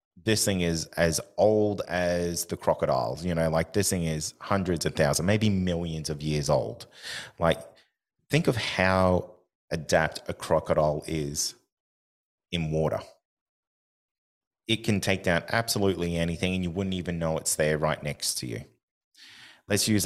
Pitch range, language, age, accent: 80-95 Hz, English, 30-49, Australian